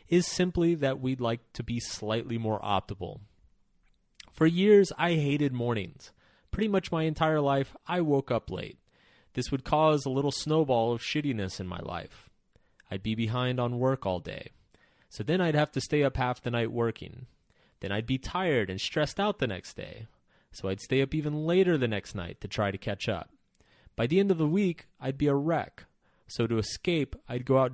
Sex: male